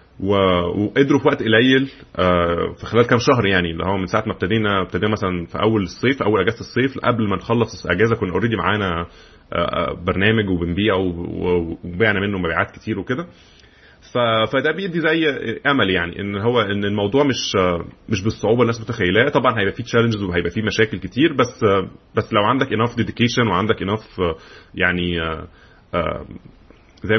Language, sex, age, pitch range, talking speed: Arabic, male, 30-49, 90-115 Hz, 150 wpm